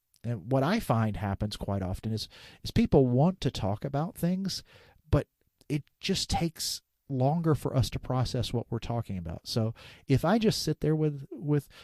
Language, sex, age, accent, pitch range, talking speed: English, male, 40-59, American, 105-135 Hz, 180 wpm